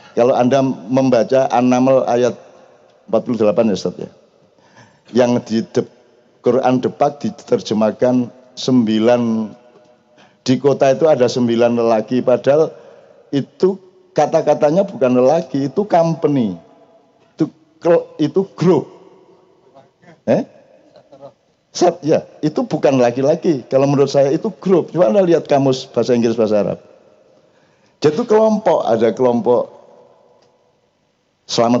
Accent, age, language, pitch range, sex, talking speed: native, 50-69, Indonesian, 120-185 Hz, male, 110 wpm